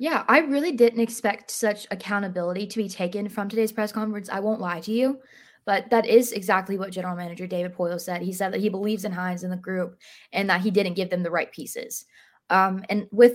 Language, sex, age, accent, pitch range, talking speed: English, female, 20-39, American, 180-215 Hz, 230 wpm